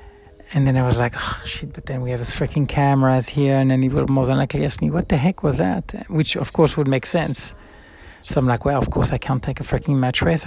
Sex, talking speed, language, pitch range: male, 270 wpm, English, 135-160 Hz